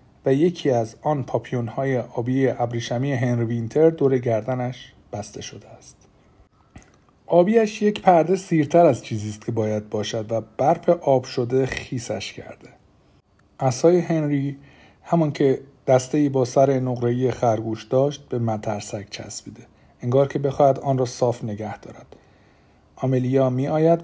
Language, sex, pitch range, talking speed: Persian, male, 120-155 Hz, 135 wpm